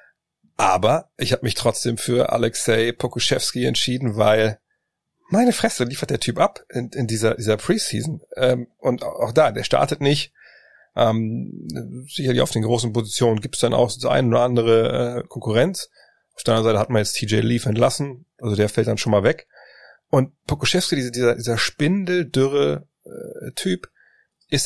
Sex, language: male, German